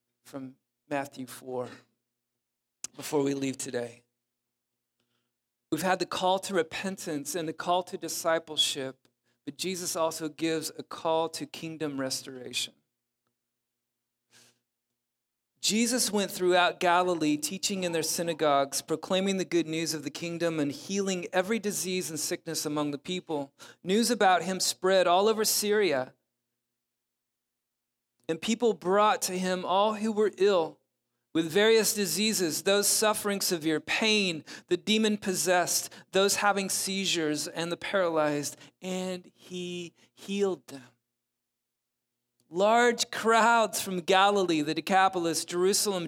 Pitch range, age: 125-190 Hz, 40-59